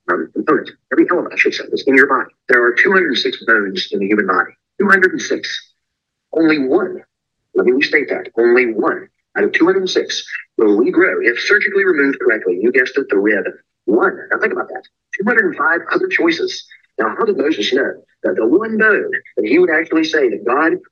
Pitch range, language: 350-400 Hz, English